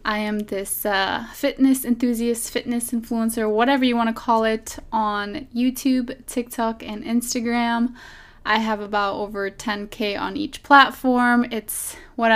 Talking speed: 140 wpm